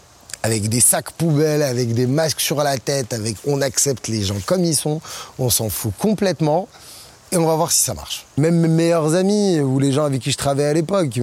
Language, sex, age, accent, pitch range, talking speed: French, male, 20-39, French, 120-155 Hz, 230 wpm